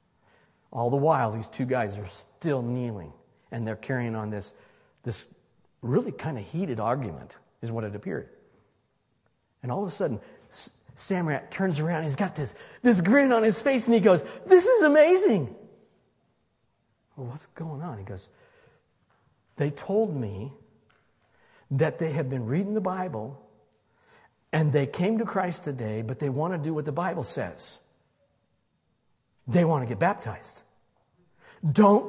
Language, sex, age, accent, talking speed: English, male, 50-69, American, 155 wpm